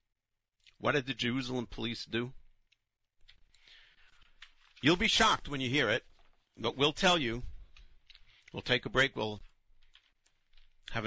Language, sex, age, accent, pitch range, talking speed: English, male, 50-69, American, 110-145 Hz, 125 wpm